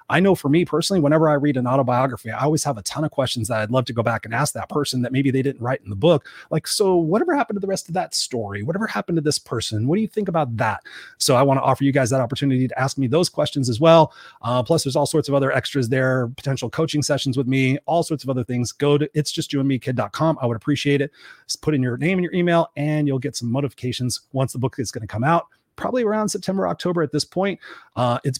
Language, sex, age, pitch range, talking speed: English, male, 30-49, 125-155 Hz, 275 wpm